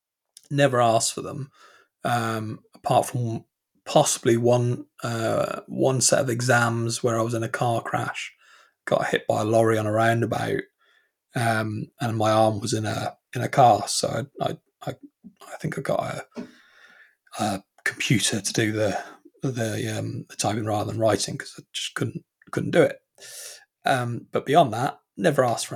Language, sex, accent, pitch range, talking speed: English, male, British, 110-145 Hz, 170 wpm